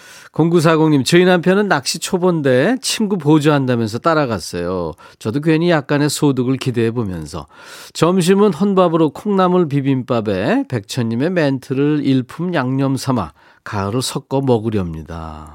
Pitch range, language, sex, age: 115-165 Hz, Korean, male, 40-59